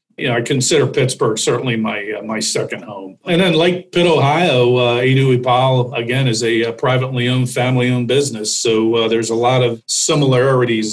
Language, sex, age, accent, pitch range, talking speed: English, male, 50-69, American, 125-145 Hz, 185 wpm